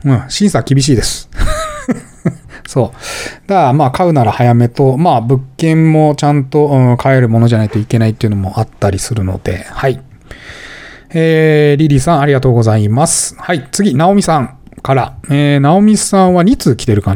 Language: Japanese